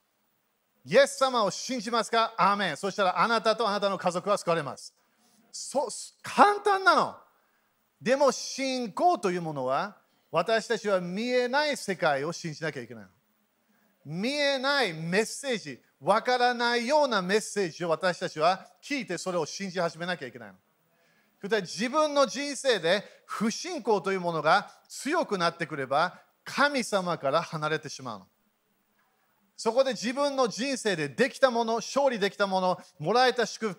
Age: 40-59